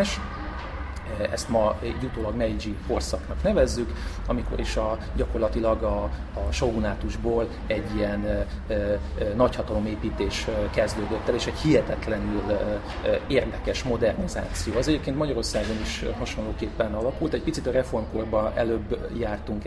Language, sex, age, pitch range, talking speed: Hungarian, male, 40-59, 100-110 Hz, 115 wpm